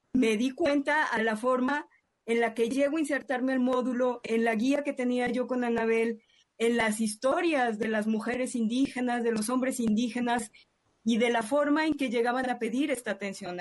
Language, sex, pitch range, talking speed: Spanish, female, 225-270 Hz, 195 wpm